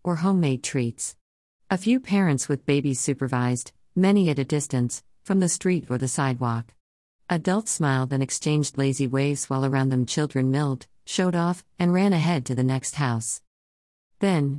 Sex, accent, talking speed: female, American, 165 wpm